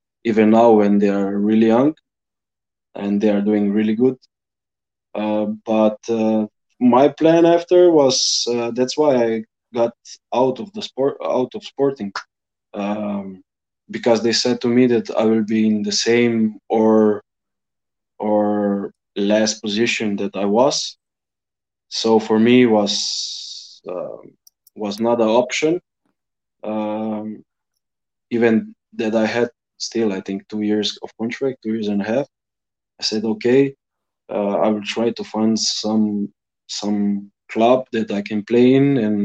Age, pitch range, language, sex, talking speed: 20-39, 105-120 Hz, English, male, 145 wpm